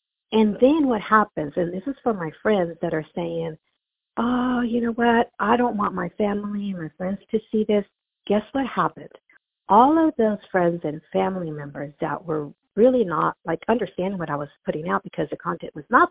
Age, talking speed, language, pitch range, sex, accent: 50-69, 200 wpm, English, 155-215 Hz, female, American